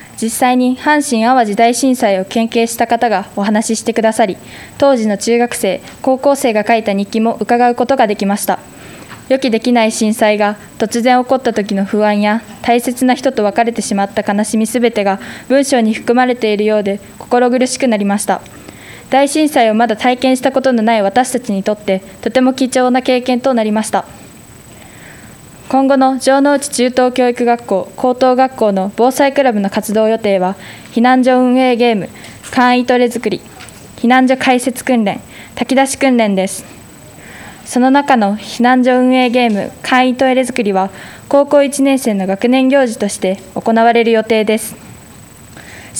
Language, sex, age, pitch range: Japanese, female, 20-39, 215-255 Hz